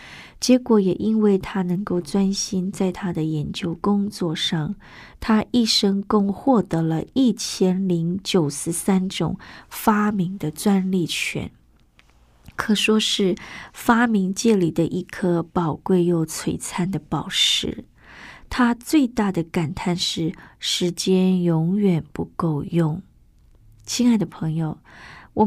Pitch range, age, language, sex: 170-210 Hz, 20-39, Chinese, female